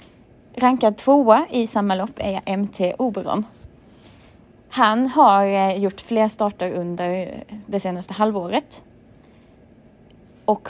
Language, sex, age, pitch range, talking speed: Swedish, female, 20-39, 190-235 Hz, 105 wpm